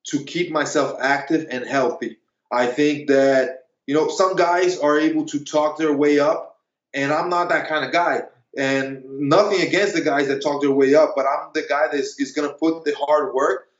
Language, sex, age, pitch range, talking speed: English, male, 20-39, 135-165 Hz, 220 wpm